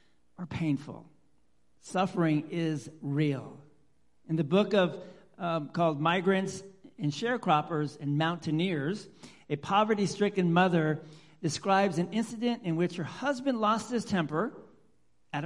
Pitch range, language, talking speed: 145-215 Hz, English, 115 wpm